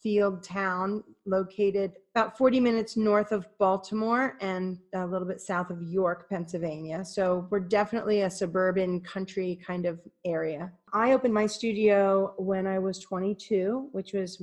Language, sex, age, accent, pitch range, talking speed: English, female, 30-49, American, 180-205 Hz, 150 wpm